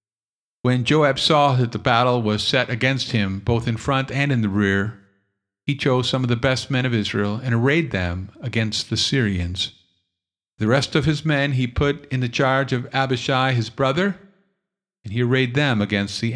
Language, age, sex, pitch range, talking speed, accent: English, 50-69, male, 110-140 Hz, 190 wpm, American